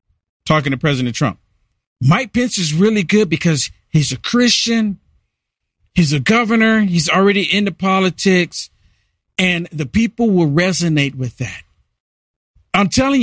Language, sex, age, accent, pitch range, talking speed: English, male, 50-69, American, 145-220 Hz, 130 wpm